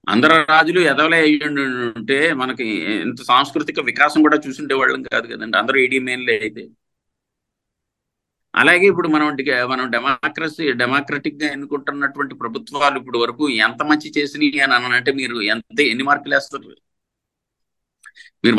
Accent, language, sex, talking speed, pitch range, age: native, Telugu, male, 125 wpm, 130-170 Hz, 50-69